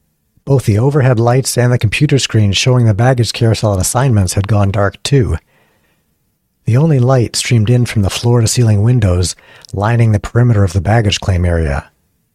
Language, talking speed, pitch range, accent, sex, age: English, 170 wpm, 95-125 Hz, American, male, 60-79